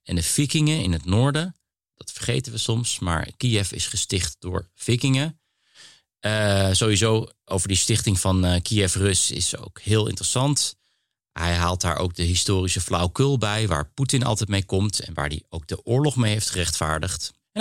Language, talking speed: Dutch, 170 wpm